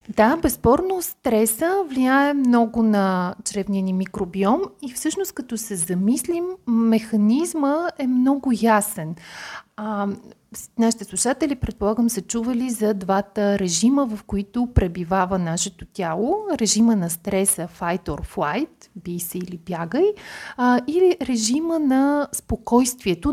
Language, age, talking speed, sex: Bulgarian, 30-49, 120 wpm, female